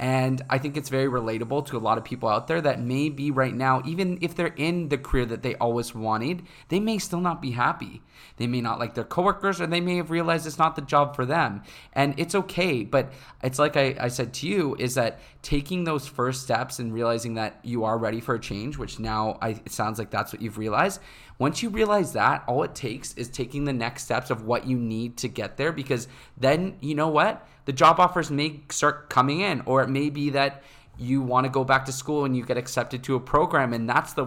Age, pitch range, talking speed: 20-39, 115-145 Hz, 245 wpm